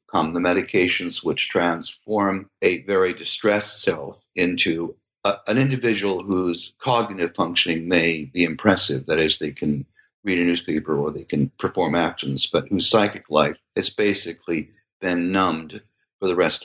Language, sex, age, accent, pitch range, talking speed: English, male, 60-79, American, 90-135 Hz, 145 wpm